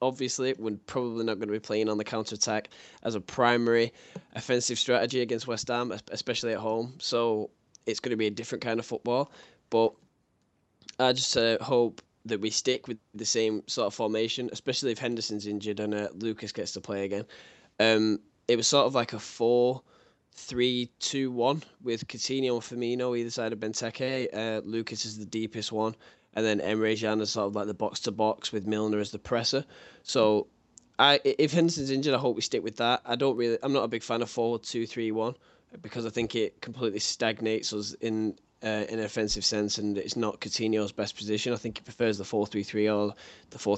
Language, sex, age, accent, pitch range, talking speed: English, male, 10-29, British, 105-120 Hz, 195 wpm